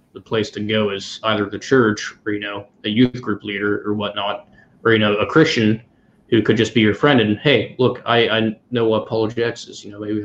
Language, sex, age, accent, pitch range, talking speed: English, male, 20-39, American, 105-120 Hz, 240 wpm